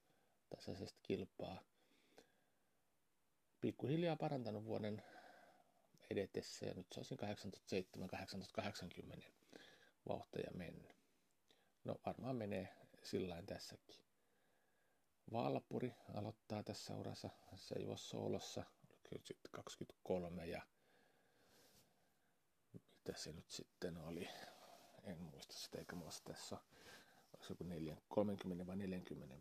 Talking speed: 95 wpm